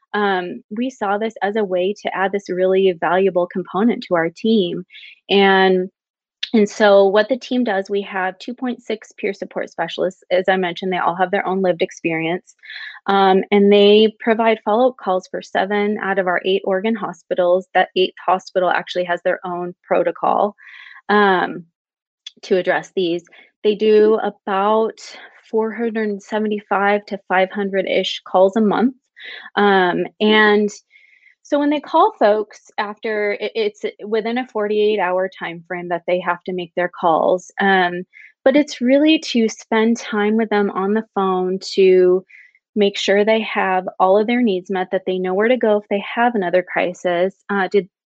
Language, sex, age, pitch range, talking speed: English, female, 20-39, 185-220 Hz, 165 wpm